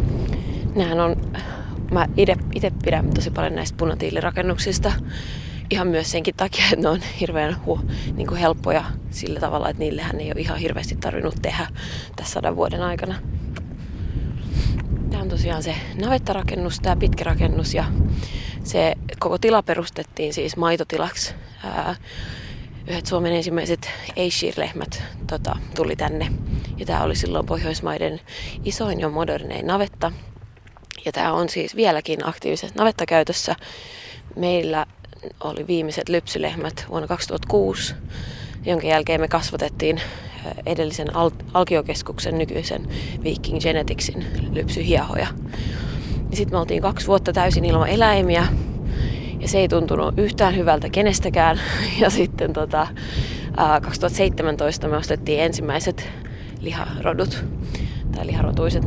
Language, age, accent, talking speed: Finnish, 30-49, native, 115 wpm